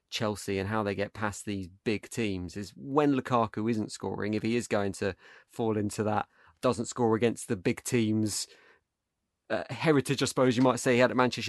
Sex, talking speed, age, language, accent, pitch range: male, 205 wpm, 20-39, English, British, 105-120 Hz